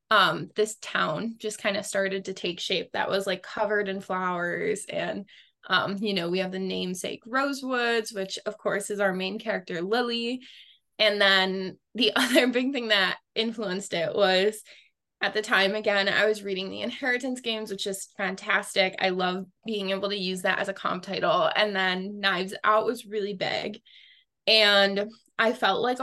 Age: 20-39